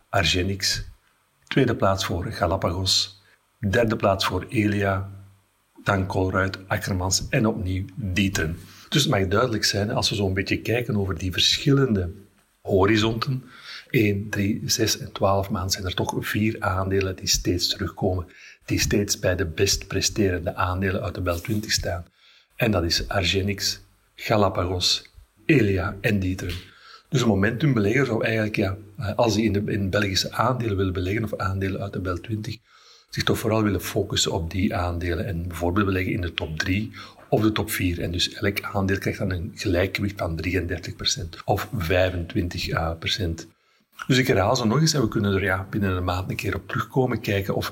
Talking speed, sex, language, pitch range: 170 wpm, male, Dutch, 95-110 Hz